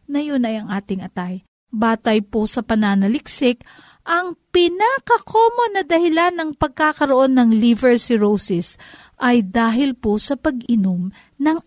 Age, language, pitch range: 40-59, Filipino, 220-300 Hz